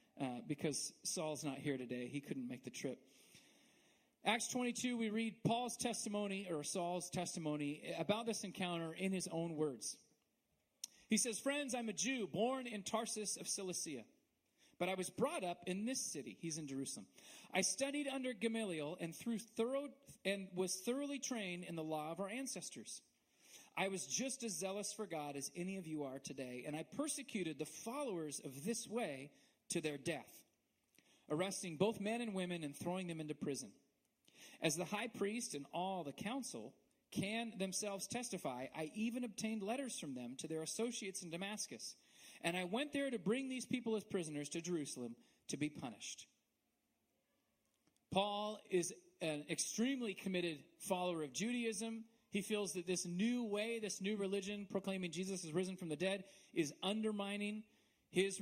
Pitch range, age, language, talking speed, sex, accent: 165-225 Hz, 40-59, English, 165 wpm, male, American